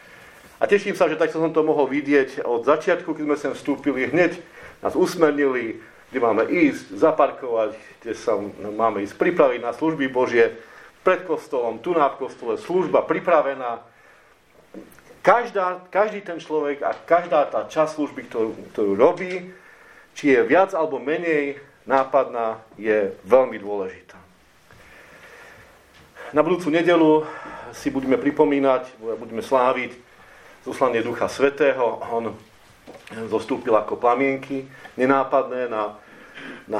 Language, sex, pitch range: Slovak, male, 120-165 Hz